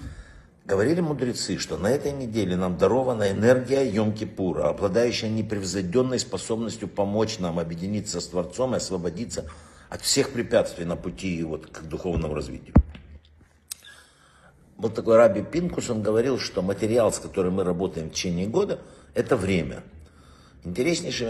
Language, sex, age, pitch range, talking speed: Russian, male, 60-79, 90-120 Hz, 140 wpm